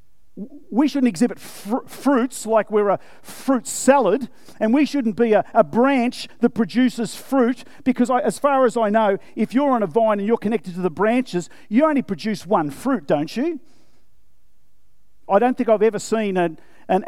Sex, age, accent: male, 50-69, Australian